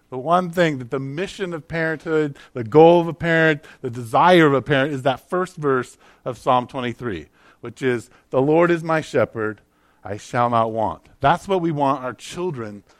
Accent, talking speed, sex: American, 195 wpm, male